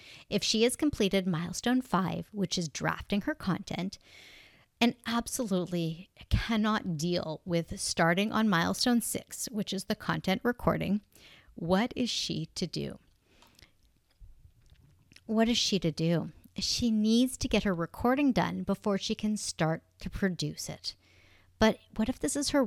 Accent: American